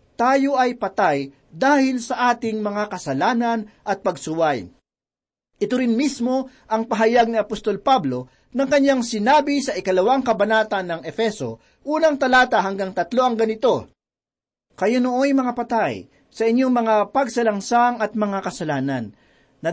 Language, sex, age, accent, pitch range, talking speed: Filipino, male, 40-59, native, 190-240 Hz, 130 wpm